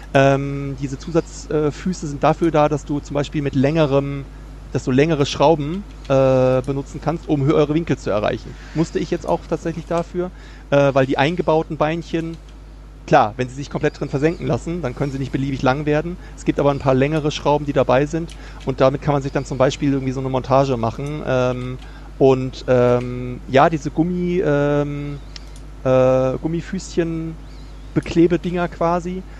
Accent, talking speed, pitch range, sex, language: German, 175 wpm, 135-160 Hz, male, German